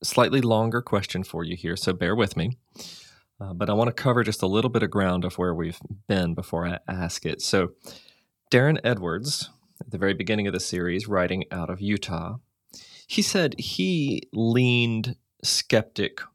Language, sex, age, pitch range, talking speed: English, male, 30-49, 95-125 Hz, 180 wpm